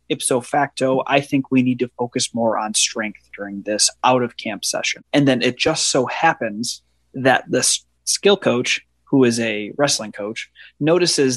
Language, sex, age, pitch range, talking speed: English, male, 30-49, 120-140 Hz, 175 wpm